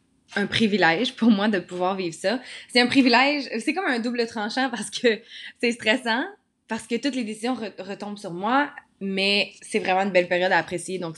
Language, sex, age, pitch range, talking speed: French, female, 20-39, 180-225 Hz, 205 wpm